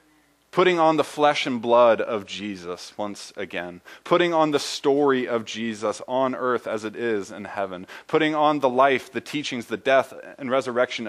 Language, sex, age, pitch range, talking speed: English, male, 20-39, 110-145 Hz, 180 wpm